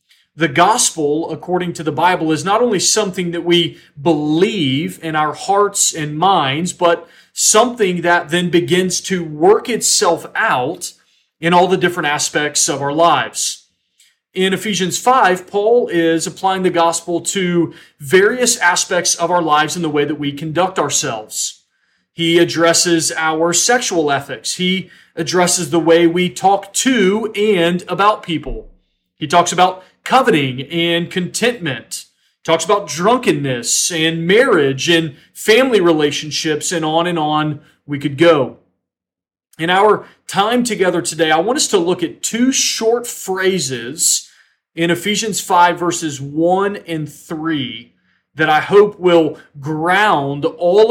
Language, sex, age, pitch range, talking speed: English, male, 40-59, 155-190 Hz, 140 wpm